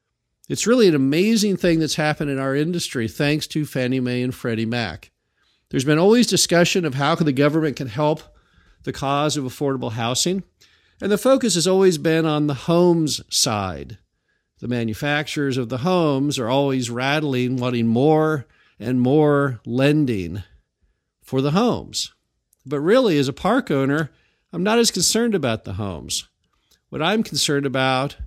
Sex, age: male, 50-69